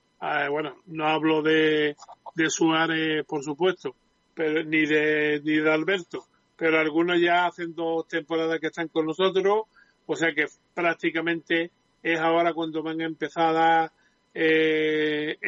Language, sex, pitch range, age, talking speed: Spanish, male, 160-180 Hz, 40-59, 145 wpm